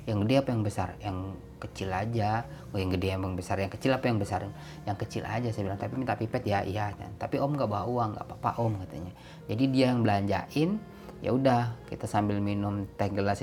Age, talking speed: 20-39, 215 wpm